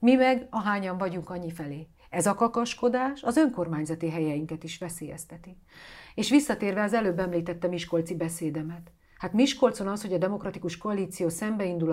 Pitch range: 170-215 Hz